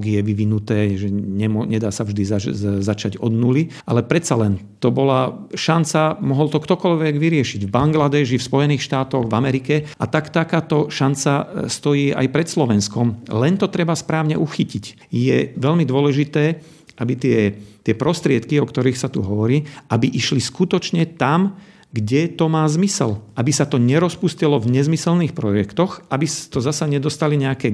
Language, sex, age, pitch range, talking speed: Slovak, male, 50-69, 125-160 Hz, 155 wpm